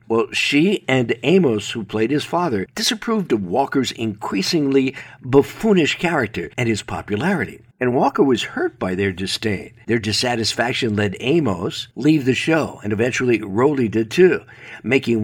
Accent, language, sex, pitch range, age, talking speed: American, English, male, 110-140 Hz, 60-79, 145 wpm